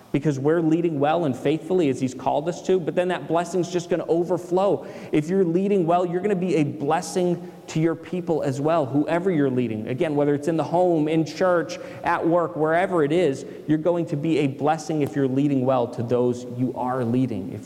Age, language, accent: 30-49, English, American